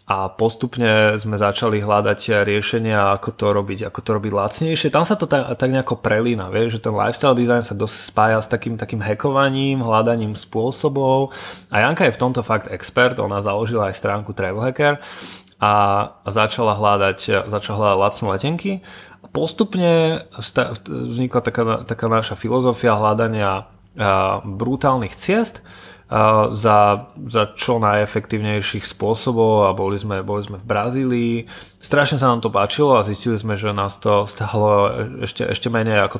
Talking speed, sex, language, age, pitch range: 150 wpm, male, Slovak, 20-39, 105-130 Hz